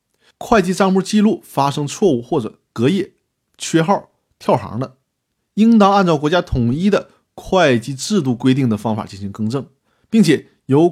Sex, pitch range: male, 120-170 Hz